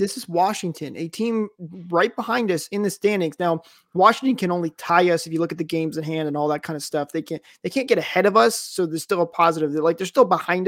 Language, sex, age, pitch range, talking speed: English, male, 20-39, 165-210 Hz, 275 wpm